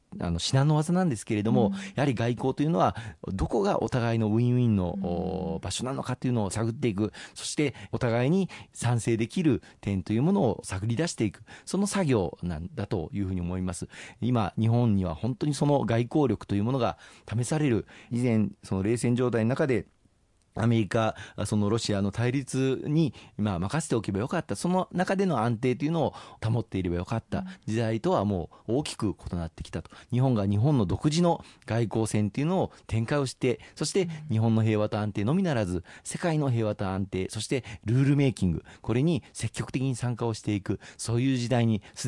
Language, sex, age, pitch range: Japanese, male, 40-59, 100-135 Hz